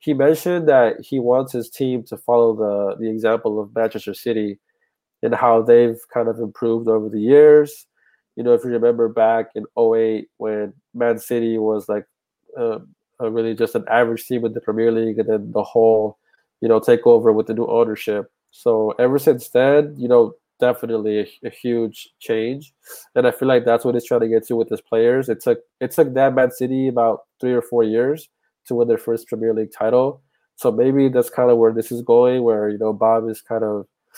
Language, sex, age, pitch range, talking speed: English, male, 20-39, 110-125 Hz, 210 wpm